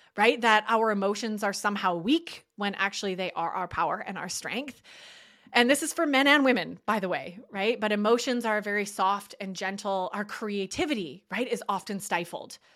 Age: 20-39